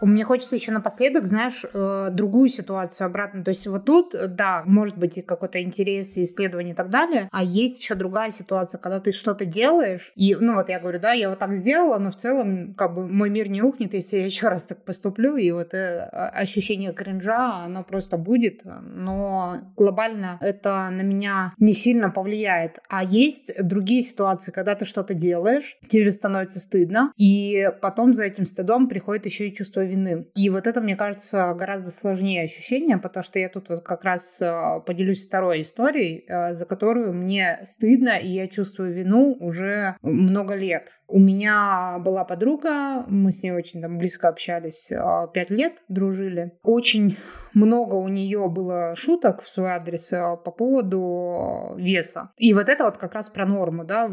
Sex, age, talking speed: female, 20-39, 175 wpm